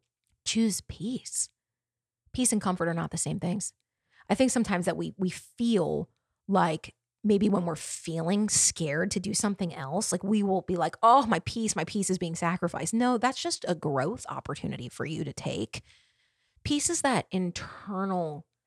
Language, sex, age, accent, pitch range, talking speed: English, female, 30-49, American, 130-200 Hz, 175 wpm